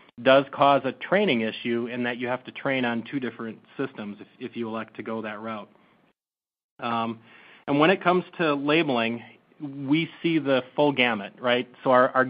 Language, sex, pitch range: English, male, 115-135 Hz